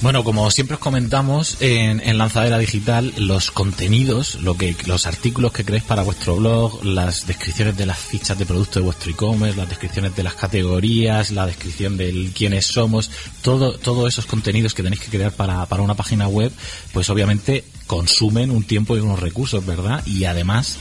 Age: 30-49